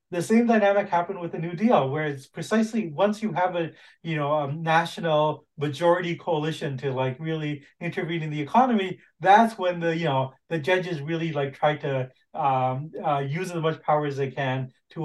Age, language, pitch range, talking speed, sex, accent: 30-49, English, 145-190 Hz, 195 wpm, male, American